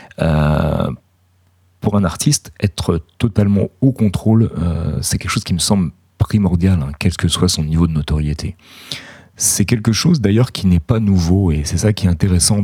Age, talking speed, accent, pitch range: 40-59, 180 wpm, French, 80-100 Hz